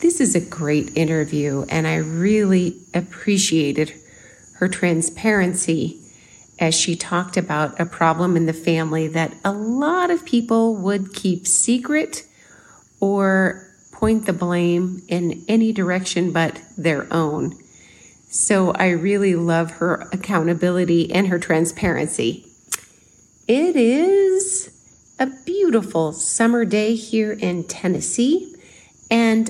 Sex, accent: female, American